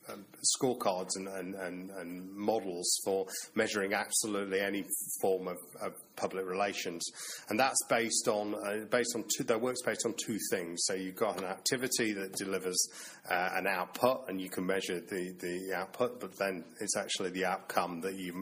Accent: British